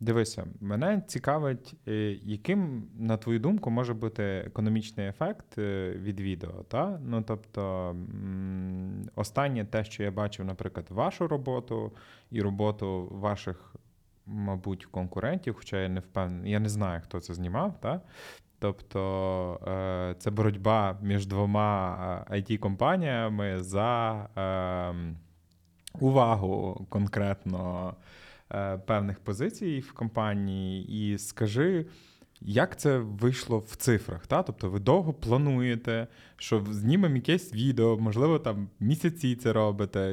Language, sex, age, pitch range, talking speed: Ukrainian, male, 20-39, 95-125 Hz, 110 wpm